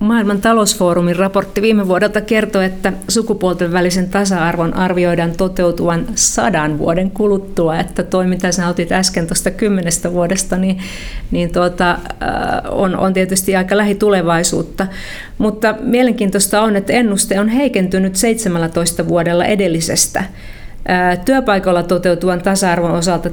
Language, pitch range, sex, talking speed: Finnish, 170-200 Hz, female, 115 wpm